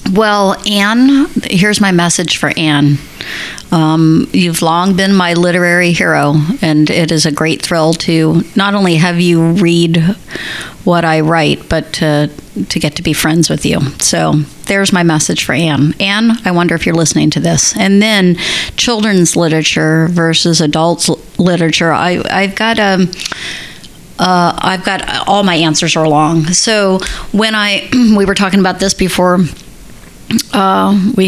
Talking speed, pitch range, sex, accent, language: 160 wpm, 170-195 Hz, female, American, English